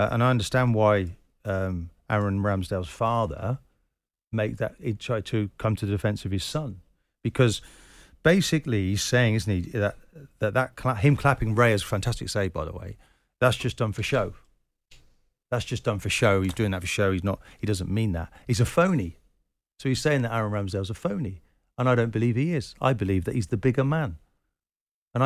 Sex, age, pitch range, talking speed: male, 40-59, 100-130 Hz, 205 wpm